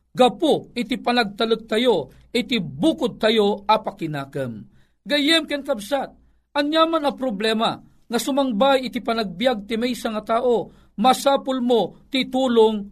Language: Filipino